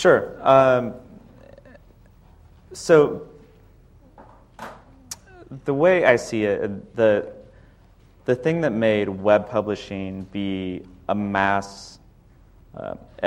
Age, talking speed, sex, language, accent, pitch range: 30-49, 85 wpm, male, English, American, 100-115 Hz